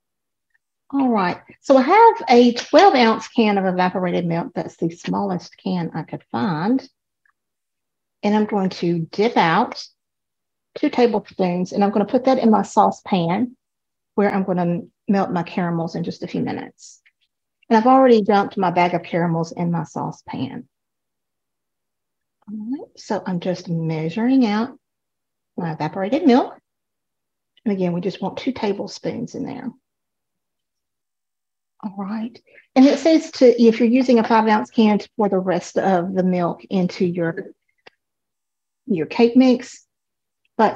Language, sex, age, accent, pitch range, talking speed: English, female, 50-69, American, 180-245 Hz, 150 wpm